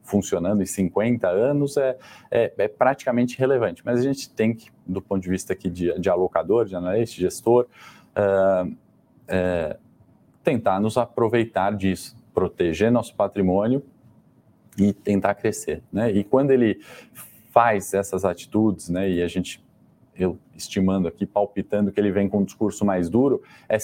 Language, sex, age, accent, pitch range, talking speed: Portuguese, male, 20-39, Brazilian, 95-115 Hz, 145 wpm